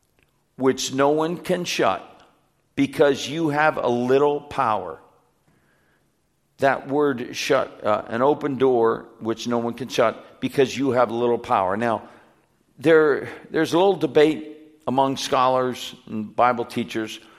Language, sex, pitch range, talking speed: English, male, 115-150 Hz, 140 wpm